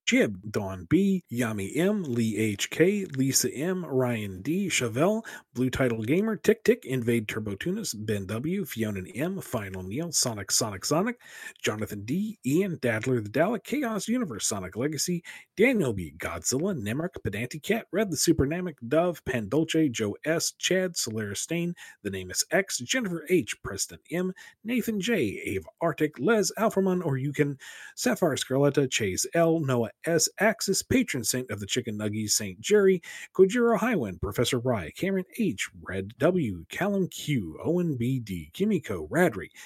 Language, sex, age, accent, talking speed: English, male, 40-59, American, 155 wpm